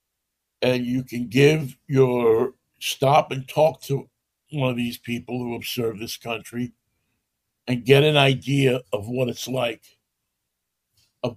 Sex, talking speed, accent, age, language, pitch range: male, 145 wpm, American, 60-79, English, 115-140 Hz